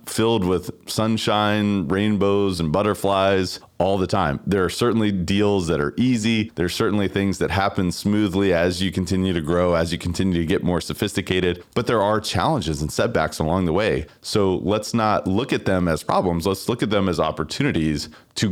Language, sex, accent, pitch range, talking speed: English, male, American, 90-110 Hz, 190 wpm